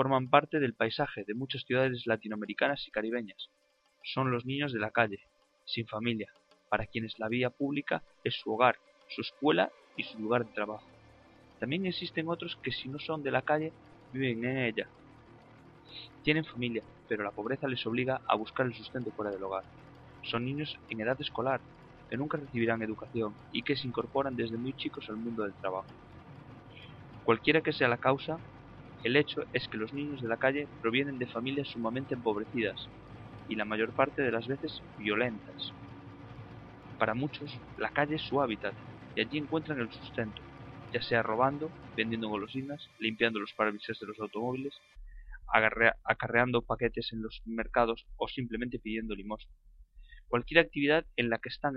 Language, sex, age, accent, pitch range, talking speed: Spanish, male, 20-39, Spanish, 110-140 Hz, 170 wpm